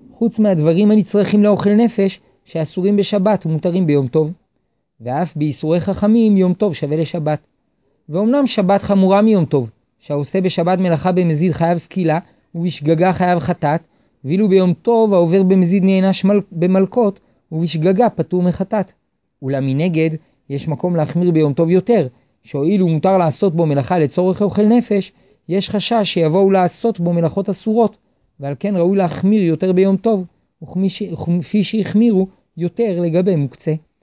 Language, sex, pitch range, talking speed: Hebrew, male, 160-200 Hz, 135 wpm